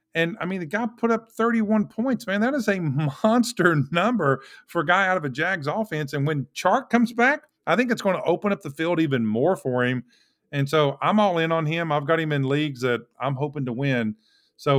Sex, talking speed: male, 240 wpm